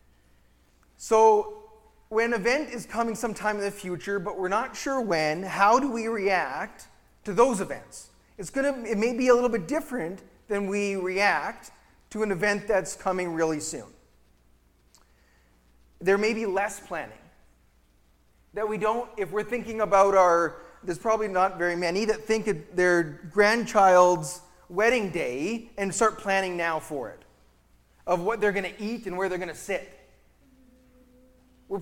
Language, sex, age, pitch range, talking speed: English, male, 30-49, 170-220 Hz, 160 wpm